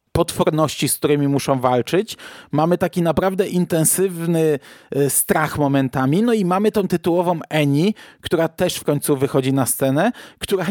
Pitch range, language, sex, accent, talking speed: 135-170 Hz, Polish, male, native, 140 wpm